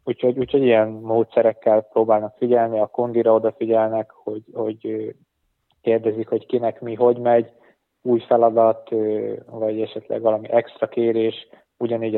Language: Hungarian